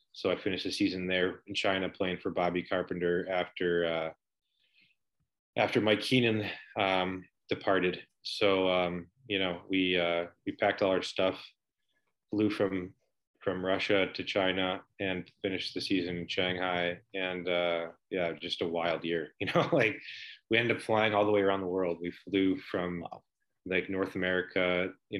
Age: 20-39